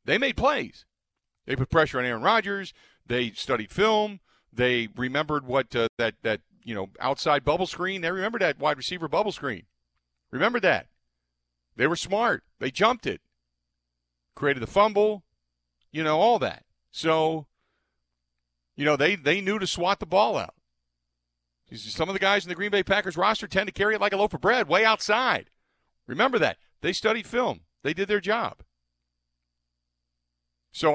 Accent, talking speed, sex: American, 170 wpm, male